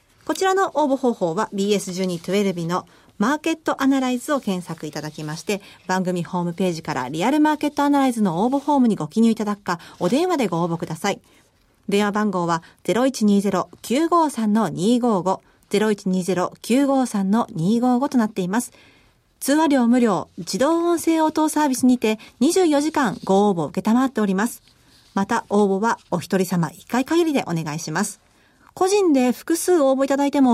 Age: 40-59